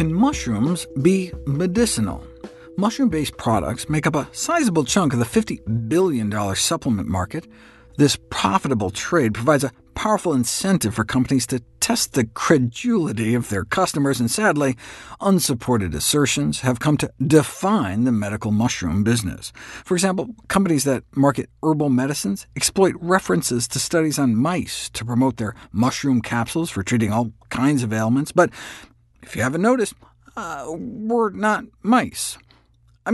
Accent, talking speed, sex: American, 145 wpm, male